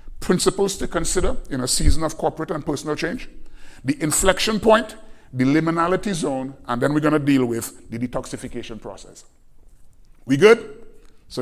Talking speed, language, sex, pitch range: 160 wpm, English, male, 130-200 Hz